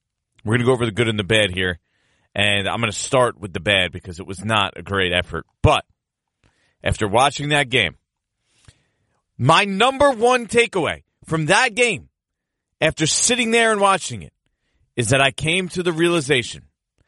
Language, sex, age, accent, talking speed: English, male, 40-59, American, 180 wpm